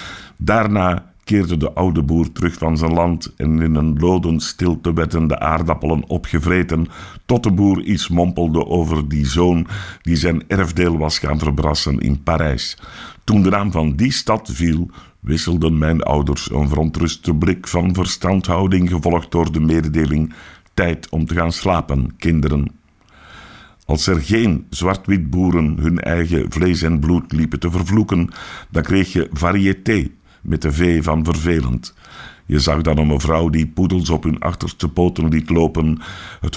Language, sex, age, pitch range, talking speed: Dutch, male, 60-79, 75-90 Hz, 155 wpm